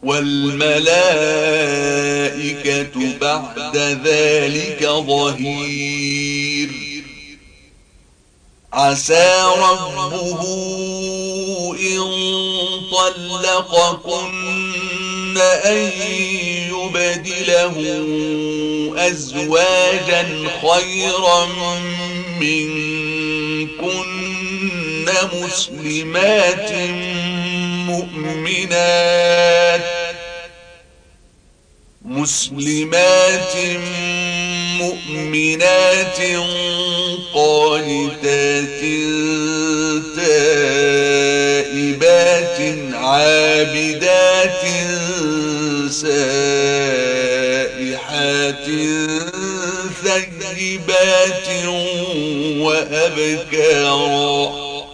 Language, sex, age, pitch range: Arabic, male, 40-59, 145-180 Hz